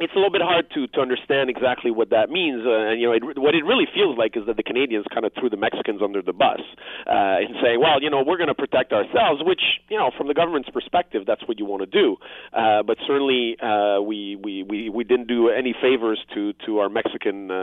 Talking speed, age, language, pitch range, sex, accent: 250 wpm, 40-59, English, 100-130 Hz, male, Canadian